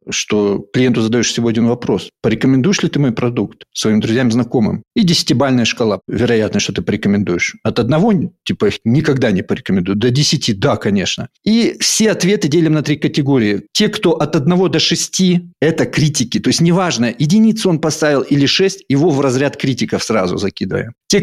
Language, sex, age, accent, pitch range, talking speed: Russian, male, 50-69, native, 125-175 Hz, 170 wpm